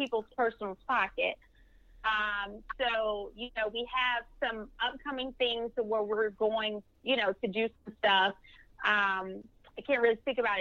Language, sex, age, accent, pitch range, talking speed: English, female, 30-49, American, 205-245 Hz, 155 wpm